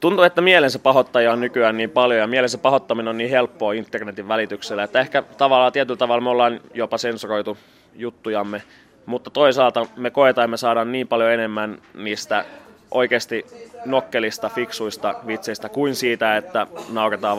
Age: 20-39